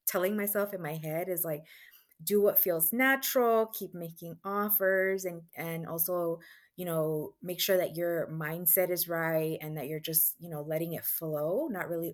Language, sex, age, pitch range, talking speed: English, female, 20-39, 160-190 Hz, 185 wpm